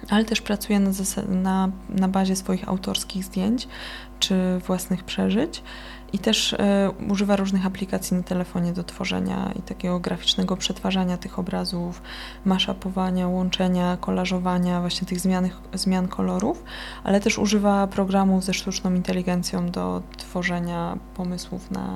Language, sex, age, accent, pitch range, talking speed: Polish, female, 20-39, native, 180-200 Hz, 125 wpm